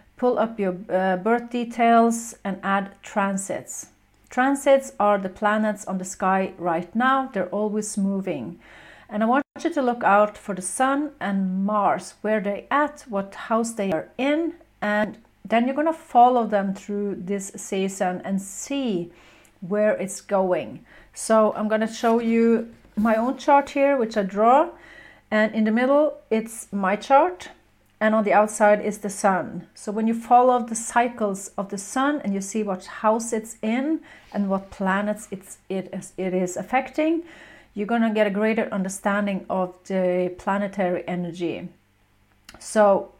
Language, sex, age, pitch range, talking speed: English, female, 40-59, 195-240 Hz, 165 wpm